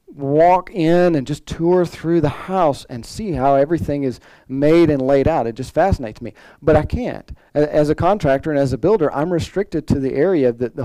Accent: American